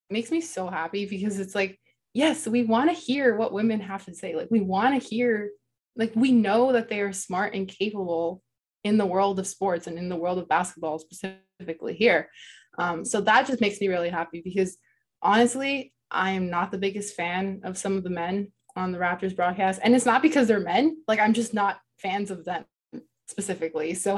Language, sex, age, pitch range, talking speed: English, female, 20-39, 180-225 Hz, 210 wpm